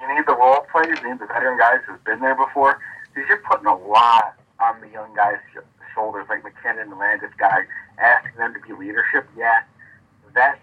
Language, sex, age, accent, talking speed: English, male, 40-59, American, 210 wpm